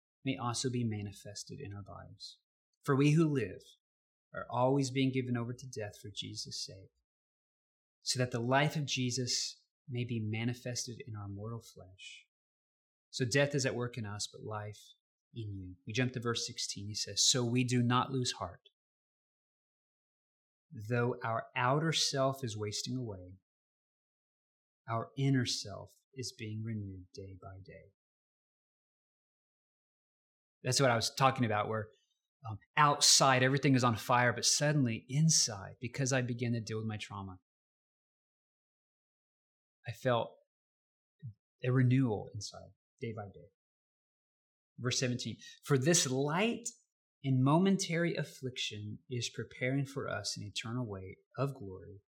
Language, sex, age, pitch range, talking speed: English, male, 30-49, 105-135 Hz, 140 wpm